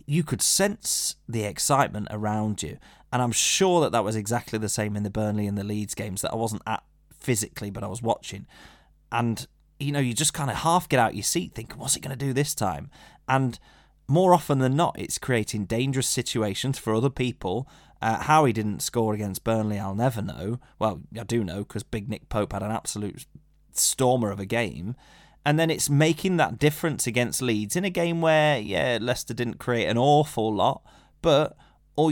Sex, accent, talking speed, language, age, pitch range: male, British, 205 wpm, English, 20-39, 105-140 Hz